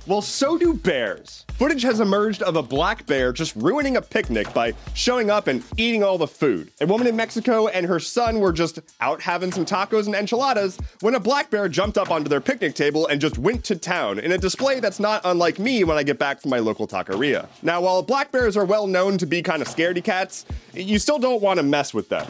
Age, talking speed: 30-49, 240 wpm